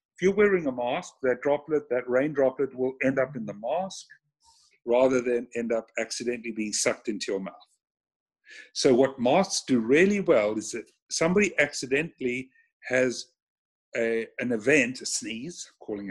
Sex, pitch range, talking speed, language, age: male, 120-160 Hz, 160 wpm, English, 50-69